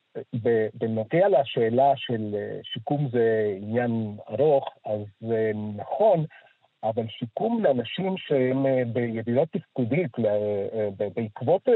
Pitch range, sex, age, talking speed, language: 115-145 Hz, male, 50-69, 85 wpm, Hebrew